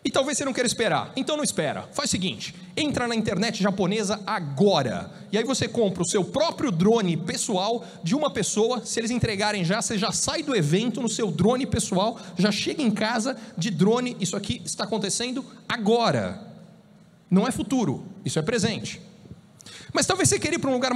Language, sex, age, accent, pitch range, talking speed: Portuguese, male, 40-59, Brazilian, 180-230 Hz, 190 wpm